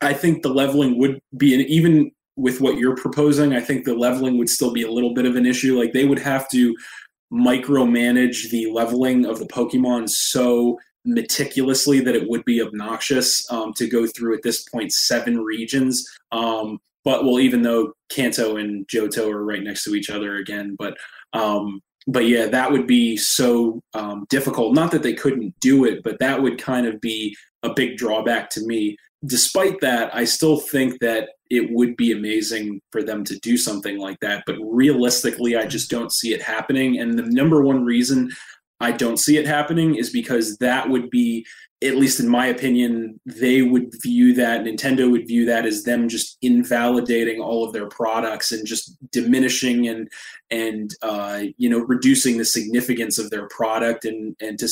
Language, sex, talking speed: English, male, 190 wpm